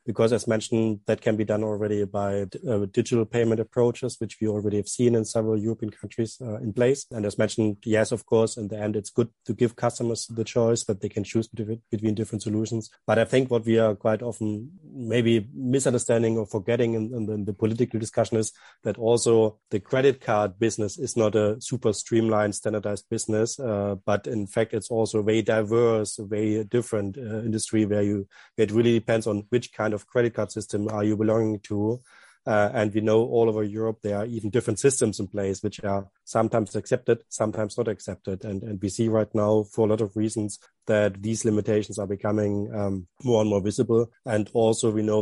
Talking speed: 205 wpm